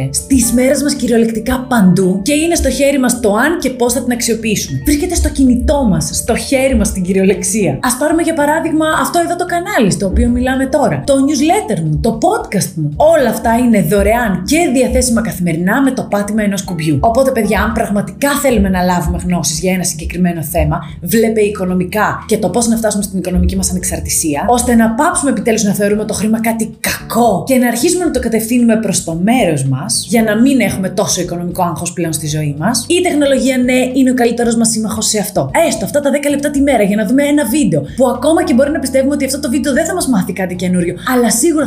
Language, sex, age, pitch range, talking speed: Greek, female, 30-49, 195-265 Hz, 215 wpm